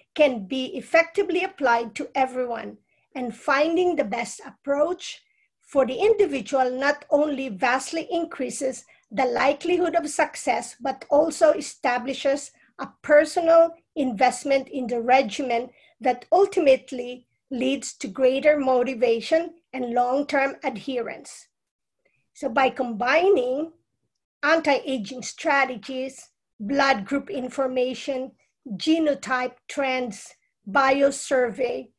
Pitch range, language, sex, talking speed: 250-300 Hz, English, female, 95 wpm